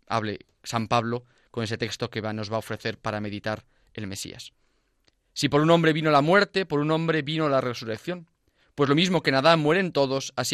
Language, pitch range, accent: Spanish, 115-155 Hz, Spanish